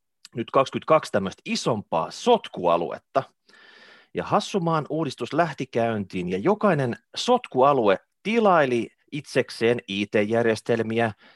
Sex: male